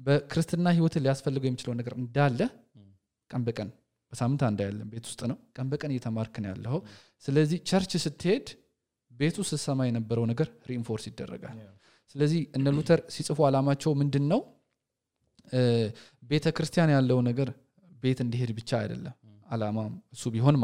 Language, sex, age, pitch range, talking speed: English, male, 20-39, 115-150 Hz, 80 wpm